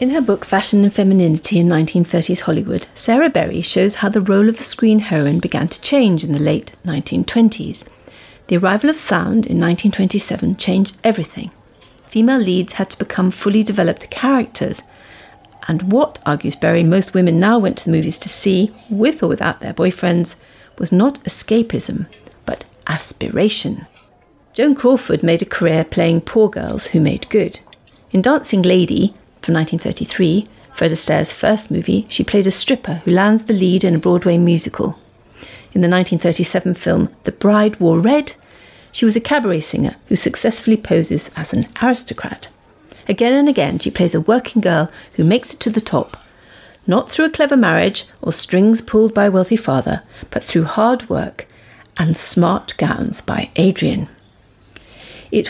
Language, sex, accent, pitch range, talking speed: English, female, British, 175-225 Hz, 165 wpm